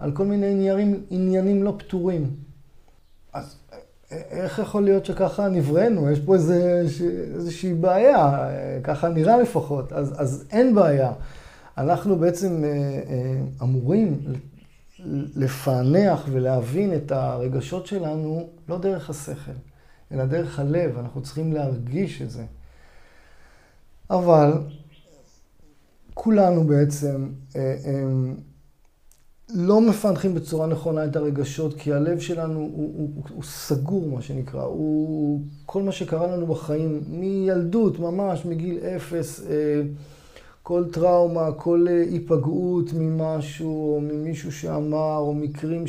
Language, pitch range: Hebrew, 145-175 Hz